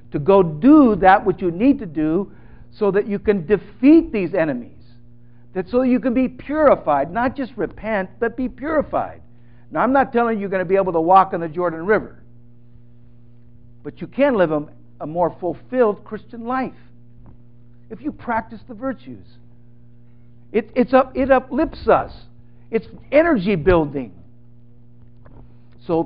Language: English